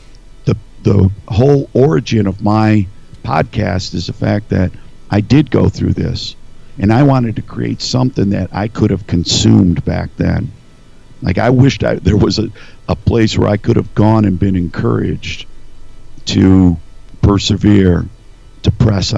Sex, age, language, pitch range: male, 50-69, English, 90-110 Hz